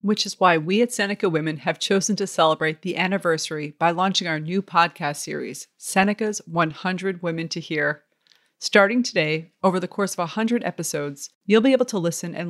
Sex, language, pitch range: female, English, 160-200 Hz